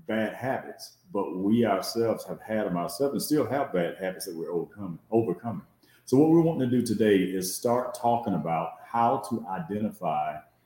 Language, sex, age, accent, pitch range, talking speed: English, male, 40-59, American, 90-135 Hz, 180 wpm